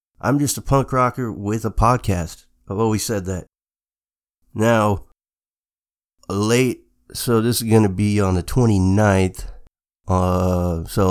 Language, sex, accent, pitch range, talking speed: English, male, American, 90-110 Hz, 135 wpm